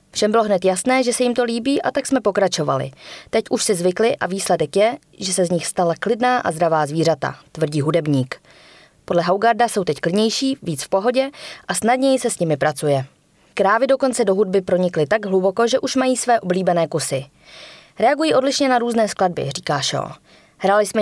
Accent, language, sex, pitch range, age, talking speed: native, Czech, female, 170-235 Hz, 20-39, 190 wpm